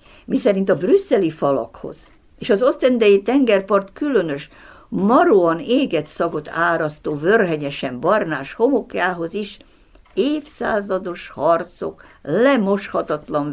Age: 60-79